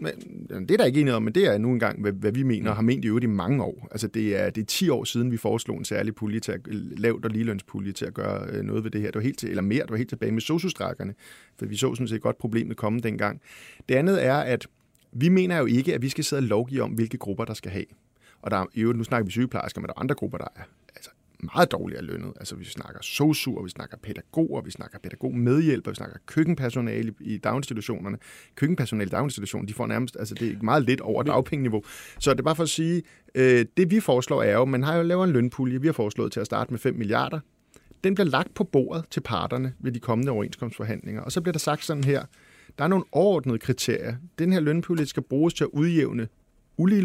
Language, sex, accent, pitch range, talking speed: Danish, male, native, 110-150 Hz, 250 wpm